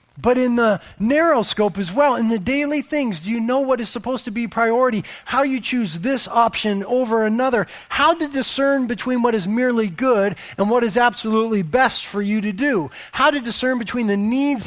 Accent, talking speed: American, 205 wpm